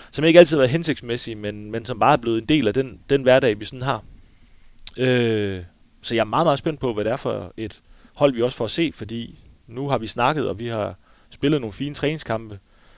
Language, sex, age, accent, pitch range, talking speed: Danish, male, 30-49, native, 100-135 Hz, 240 wpm